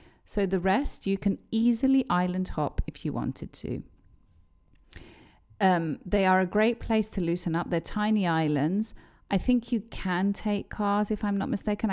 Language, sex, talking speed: Greek, female, 170 wpm